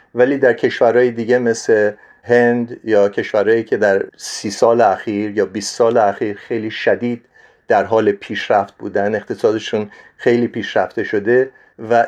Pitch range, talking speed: 105-150 Hz, 140 wpm